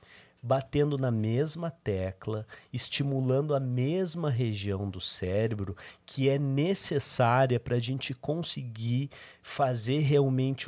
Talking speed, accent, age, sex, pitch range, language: 105 wpm, Brazilian, 50-69, male, 110-135 Hz, Portuguese